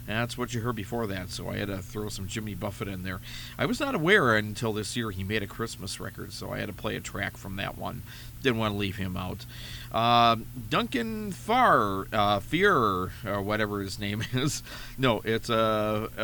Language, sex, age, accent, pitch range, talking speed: English, male, 40-59, American, 100-120 Hz, 210 wpm